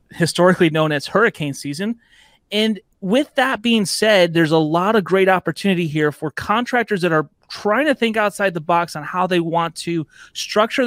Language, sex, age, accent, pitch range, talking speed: English, male, 30-49, American, 160-200 Hz, 180 wpm